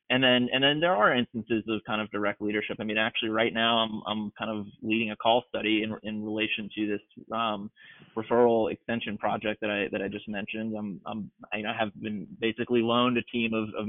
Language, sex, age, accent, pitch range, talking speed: English, male, 20-39, American, 105-120 Hz, 235 wpm